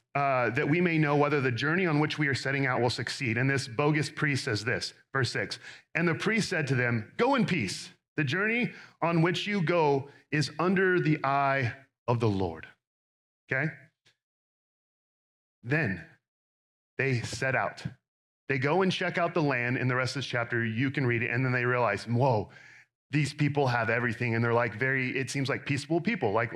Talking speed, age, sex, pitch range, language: 195 wpm, 40-59, male, 130-165 Hz, English